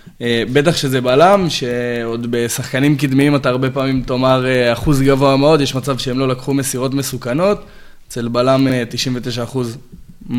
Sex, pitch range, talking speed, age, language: male, 120-155 Hz, 150 wpm, 20-39, Hebrew